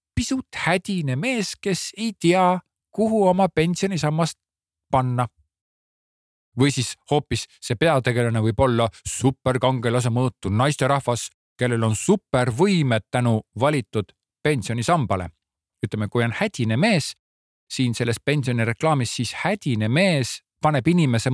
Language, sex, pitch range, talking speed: Czech, male, 105-145 Hz, 120 wpm